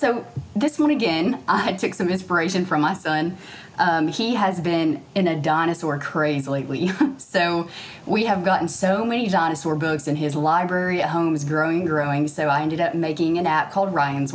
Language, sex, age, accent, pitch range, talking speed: English, female, 20-39, American, 155-180 Hz, 190 wpm